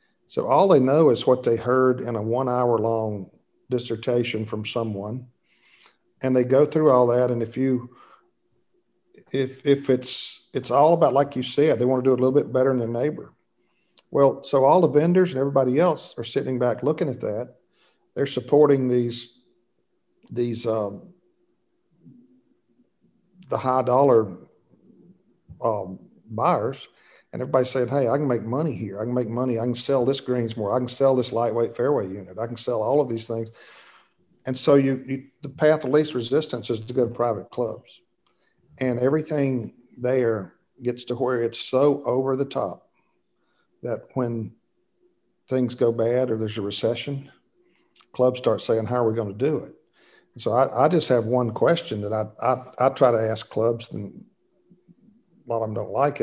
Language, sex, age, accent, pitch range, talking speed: English, male, 50-69, American, 115-140 Hz, 180 wpm